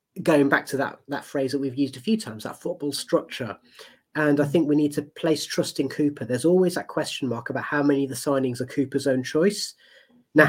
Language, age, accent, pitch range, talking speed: English, 30-49, British, 135-170 Hz, 235 wpm